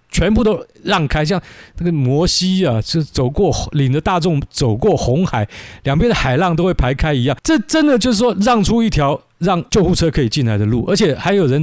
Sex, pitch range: male, 120-185 Hz